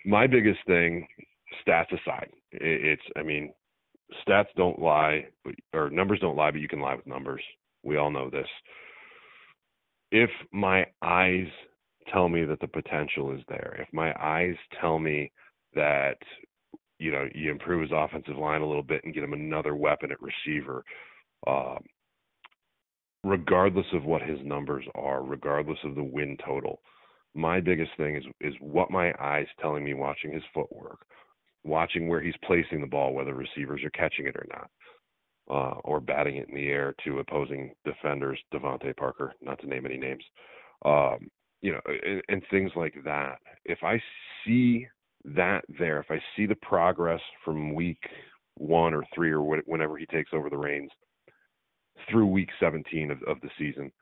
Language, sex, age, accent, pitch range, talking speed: English, male, 30-49, American, 75-85 Hz, 170 wpm